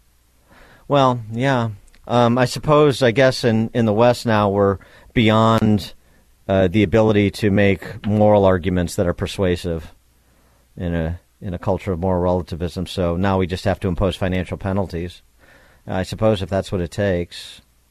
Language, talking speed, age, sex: English, 165 wpm, 50-69, male